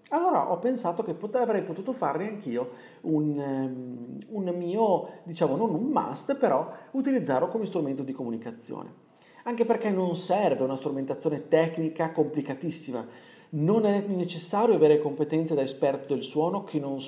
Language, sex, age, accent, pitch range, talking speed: Italian, male, 40-59, native, 135-185 Hz, 140 wpm